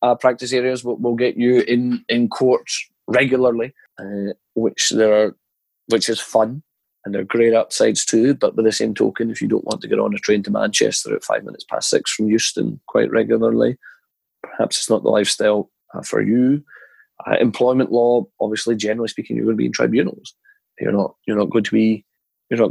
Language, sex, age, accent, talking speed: English, male, 30-49, British, 210 wpm